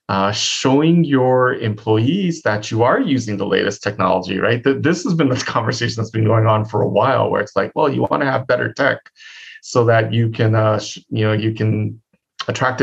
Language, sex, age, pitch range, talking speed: English, male, 30-49, 105-135 Hz, 215 wpm